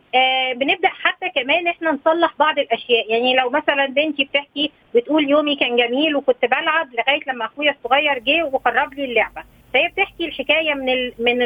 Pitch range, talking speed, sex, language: 255-315 Hz, 170 wpm, female, Arabic